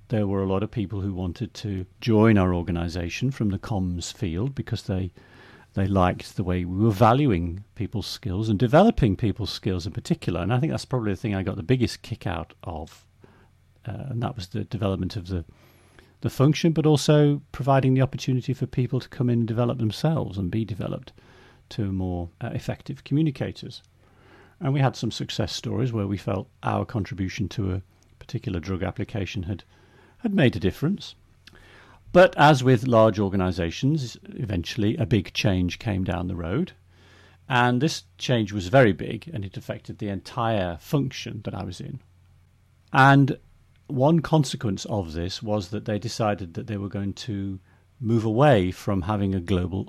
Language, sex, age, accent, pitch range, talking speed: English, male, 40-59, British, 95-125 Hz, 180 wpm